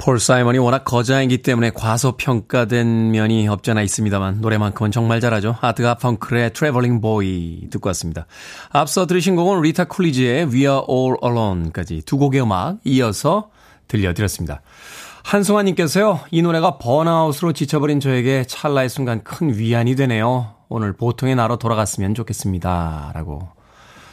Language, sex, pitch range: Korean, male, 105-140 Hz